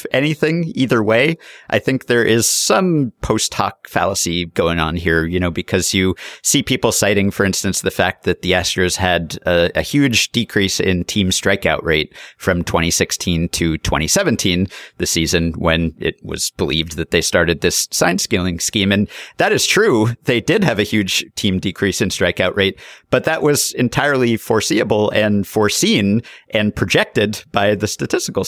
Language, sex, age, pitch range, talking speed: English, male, 50-69, 90-115 Hz, 170 wpm